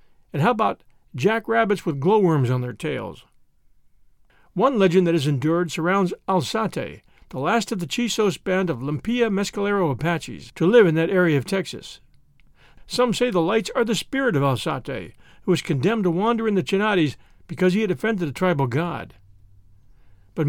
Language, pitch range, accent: English, 155-210 Hz, American